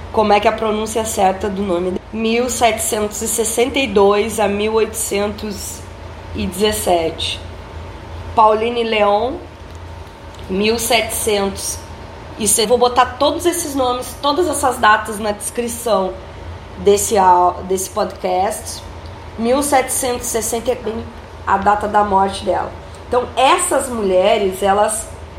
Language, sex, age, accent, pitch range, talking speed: Portuguese, female, 20-39, Brazilian, 185-245 Hz, 95 wpm